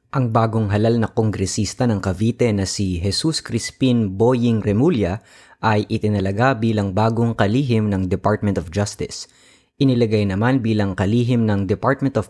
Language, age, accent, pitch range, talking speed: Filipino, 20-39, native, 105-125 Hz, 140 wpm